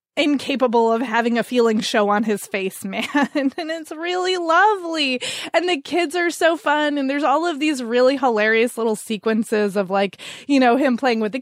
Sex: female